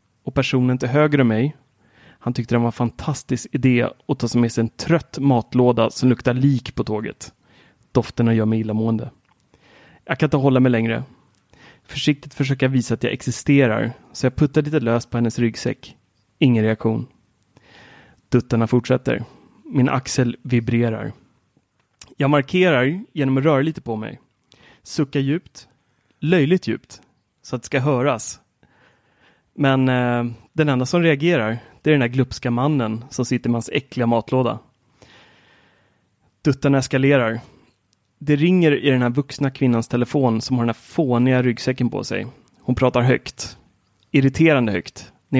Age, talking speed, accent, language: 30-49, 155 wpm, native, Swedish